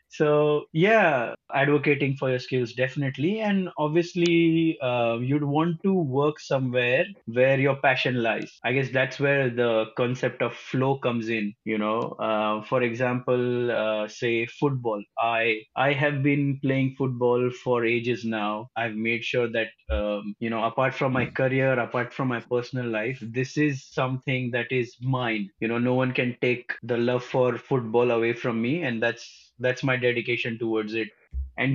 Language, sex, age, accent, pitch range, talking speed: English, male, 20-39, Indian, 120-140 Hz, 170 wpm